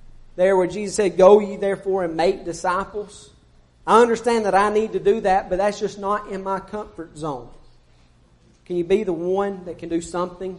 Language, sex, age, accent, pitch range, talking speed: English, male, 40-59, American, 170-195 Hz, 200 wpm